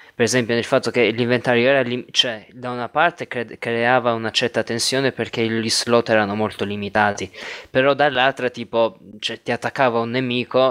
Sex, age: male, 20-39